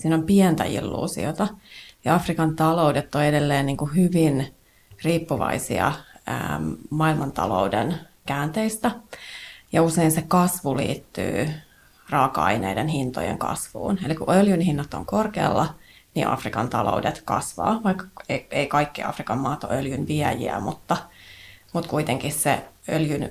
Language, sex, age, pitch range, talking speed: Finnish, female, 30-49, 145-175 Hz, 110 wpm